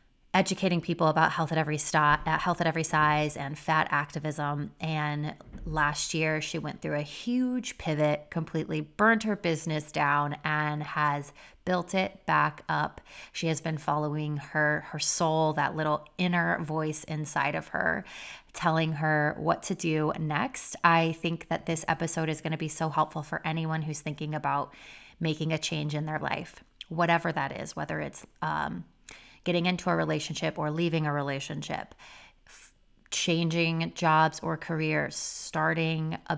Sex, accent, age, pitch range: female, American, 20-39, 150-165 Hz